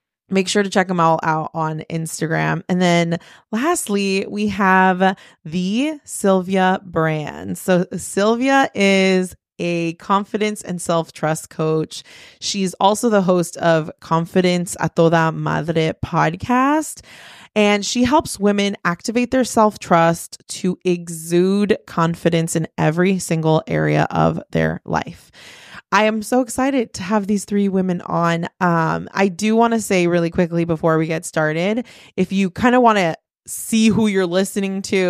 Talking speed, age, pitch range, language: 145 wpm, 20-39, 165-205 Hz, English